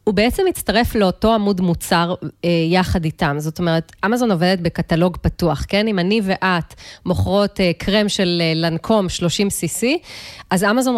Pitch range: 175-225 Hz